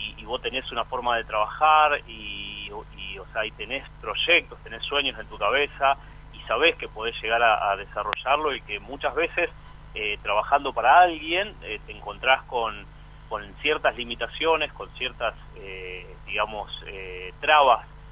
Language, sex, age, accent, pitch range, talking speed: Spanish, male, 30-49, Argentinian, 115-150 Hz, 160 wpm